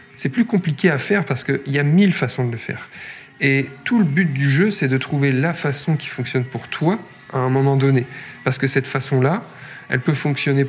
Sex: male